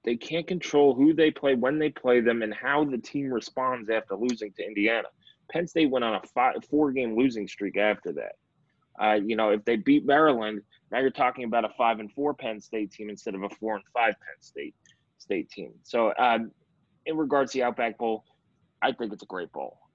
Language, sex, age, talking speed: English, male, 20-39, 200 wpm